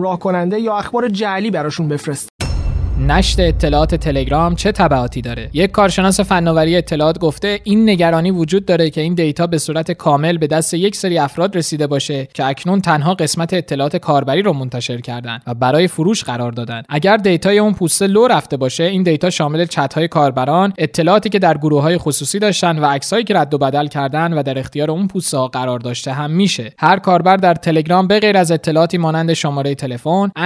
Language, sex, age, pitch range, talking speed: Persian, male, 20-39, 145-190 Hz, 185 wpm